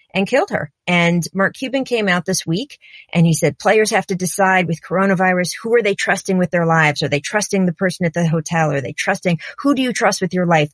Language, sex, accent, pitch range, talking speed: English, female, American, 165-200 Hz, 245 wpm